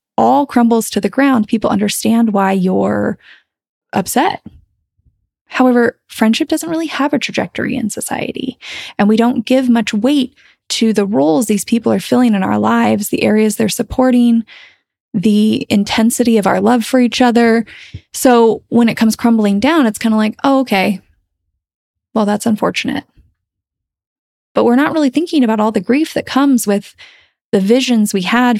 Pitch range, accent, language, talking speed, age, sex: 210-250 Hz, American, English, 165 wpm, 20-39, female